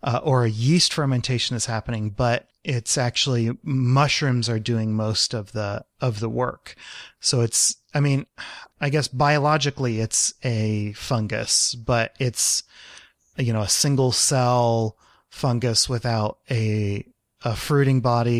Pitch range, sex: 110-135 Hz, male